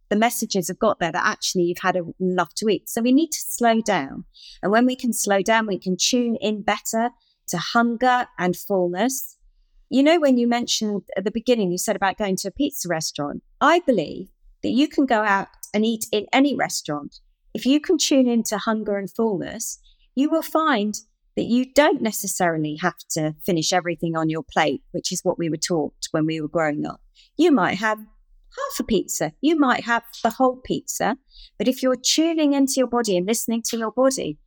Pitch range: 180-250 Hz